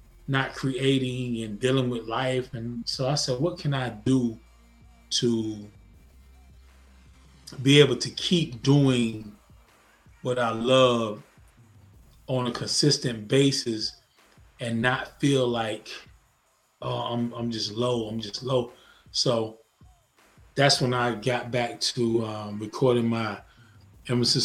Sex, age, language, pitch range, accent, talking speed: male, 20-39, English, 115-130 Hz, American, 120 wpm